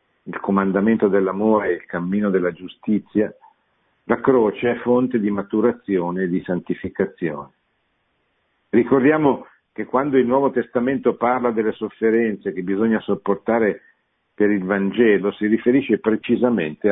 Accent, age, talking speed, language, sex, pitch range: native, 50-69, 125 wpm, Italian, male, 90-115 Hz